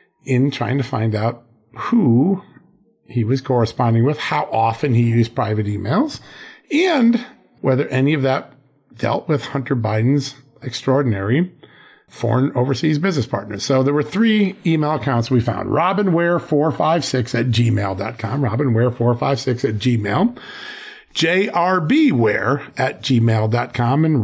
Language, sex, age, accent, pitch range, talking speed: English, male, 50-69, American, 120-155 Hz, 120 wpm